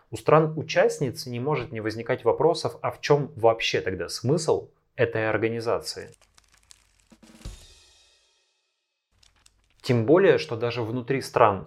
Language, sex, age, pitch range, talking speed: Russian, male, 20-39, 110-145 Hz, 110 wpm